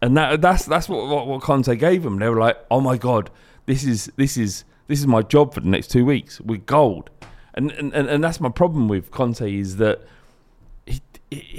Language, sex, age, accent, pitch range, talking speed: English, male, 30-49, British, 95-125 Hz, 210 wpm